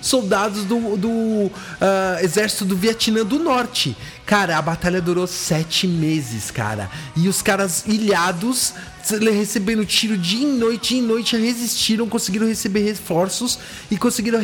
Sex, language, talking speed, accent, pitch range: male, English, 130 wpm, Brazilian, 155-225 Hz